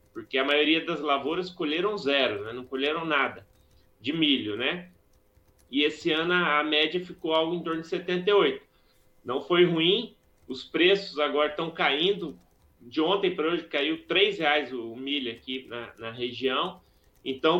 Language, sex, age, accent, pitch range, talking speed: Portuguese, male, 30-49, Brazilian, 140-200 Hz, 160 wpm